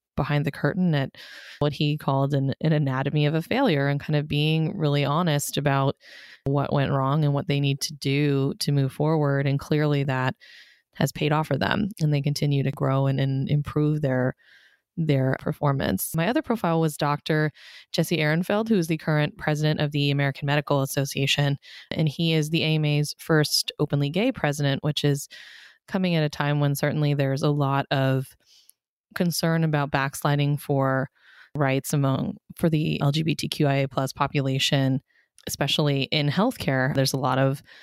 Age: 20-39